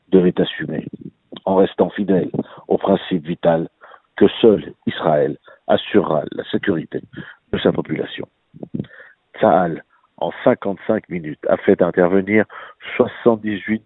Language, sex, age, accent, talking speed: French, male, 60-79, French, 110 wpm